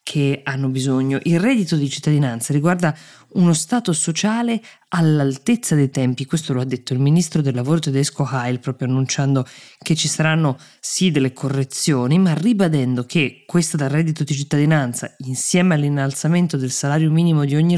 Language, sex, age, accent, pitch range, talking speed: Italian, female, 20-39, native, 135-175 Hz, 160 wpm